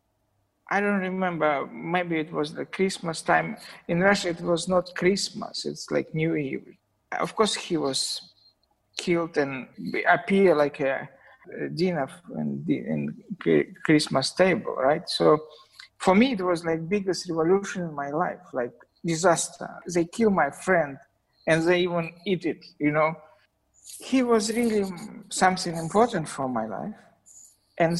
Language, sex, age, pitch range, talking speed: English, male, 50-69, 155-195 Hz, 140 wpm